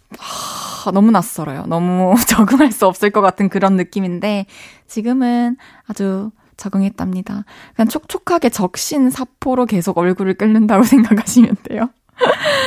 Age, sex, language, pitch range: 20-39, female, Korean, 190-260 Hz